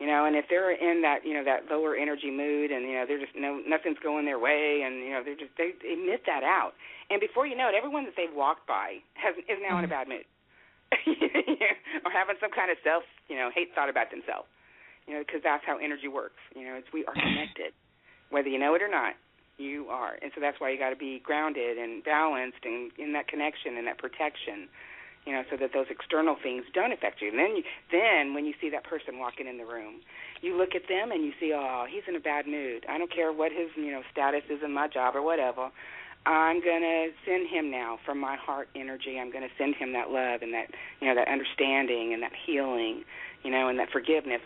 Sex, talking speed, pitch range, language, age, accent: female, 245 wpm, 130-165 Hz, English, 40-59, American